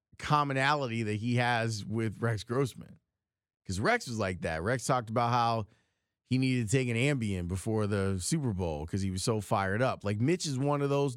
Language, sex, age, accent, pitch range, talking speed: English, male, 30-49, American, 110-160 Hz, 205 wpm